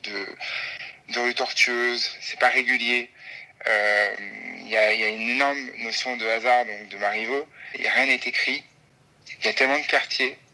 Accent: French